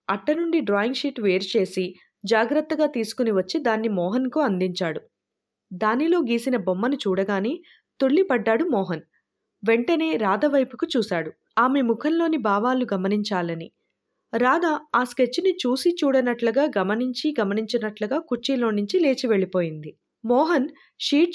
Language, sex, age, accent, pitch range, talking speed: Telugu, female, 20-39, native, 205-280 Hz, 105 wpm